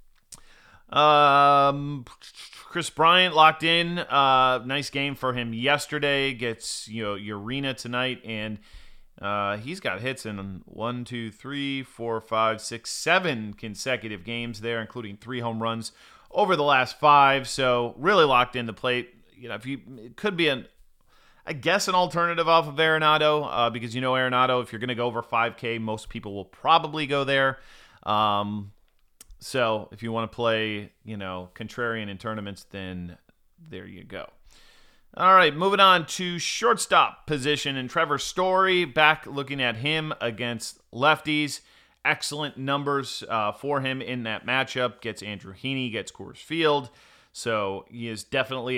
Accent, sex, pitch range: American, male, 115-145 Hz